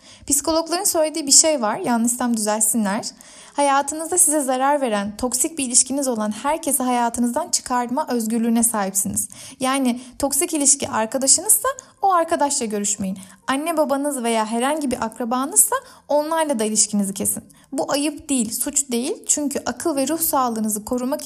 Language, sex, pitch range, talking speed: Turkish, female, 235-305 Hz, 135 wpm